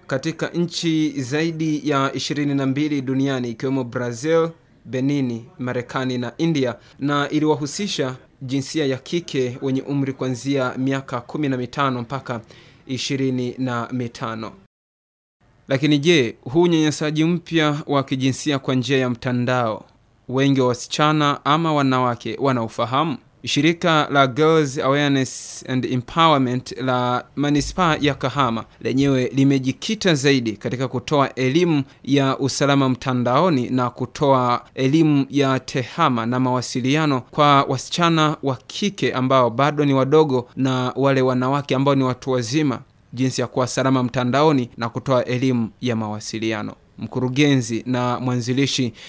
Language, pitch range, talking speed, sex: Swahili, 125-145 Hz, 115 wpm, male